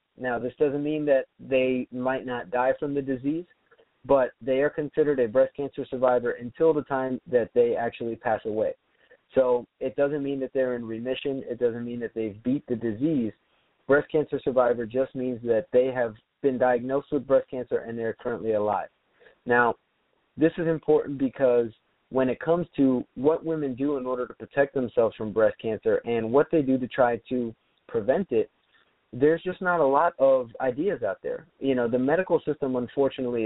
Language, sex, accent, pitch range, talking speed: English, male, American, 120-145 Hz, 190 wpm